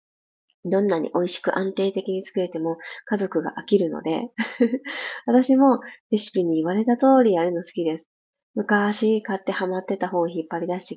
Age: 20-39